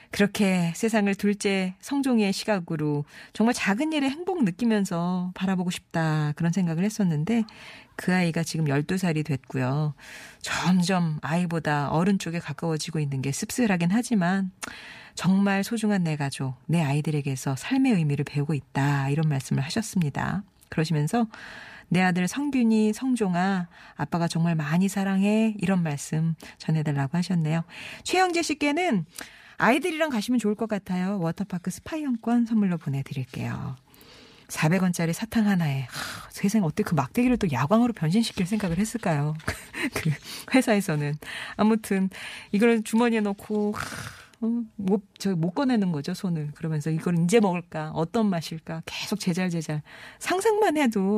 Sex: female